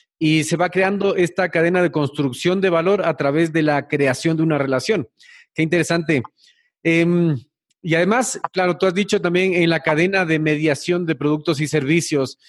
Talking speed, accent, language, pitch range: 180 wpm, Mexican, Spanish, 140-180 Hz